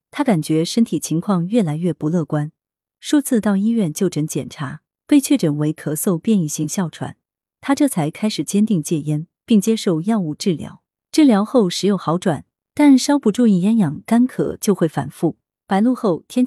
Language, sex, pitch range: Chinese, female, 160-230 Hz